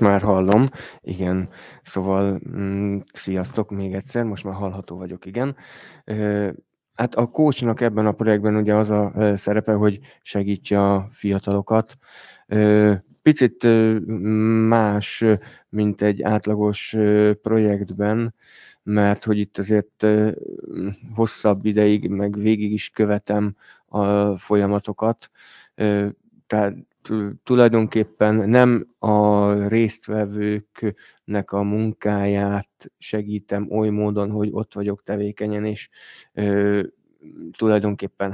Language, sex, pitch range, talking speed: Hungarian, male, 100-110 Hz, 100 wpm